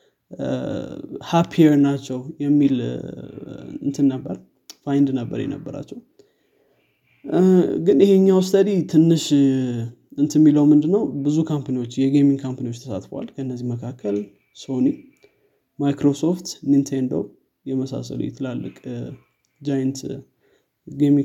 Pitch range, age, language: 135-155 Hz, 20-39, Amharic